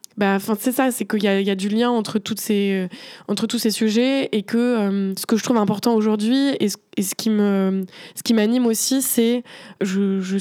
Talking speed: 255 wpm